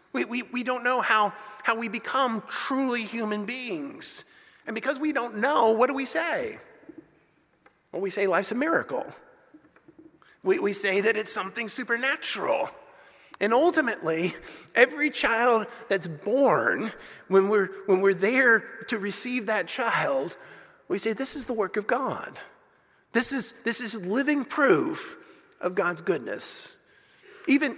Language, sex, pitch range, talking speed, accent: English, male, 190-265 Hz, 145 wpm, American